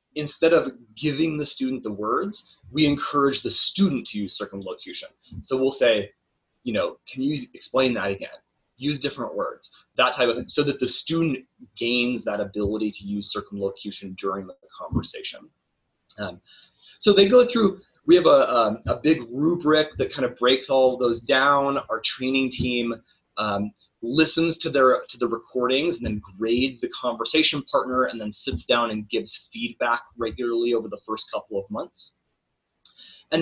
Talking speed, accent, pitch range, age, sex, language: 170 wpm, American, 115-160 Hz, 20-39, male, English